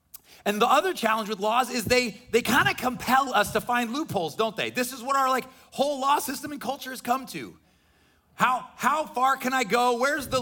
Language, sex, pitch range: English, male, 205-260 Hz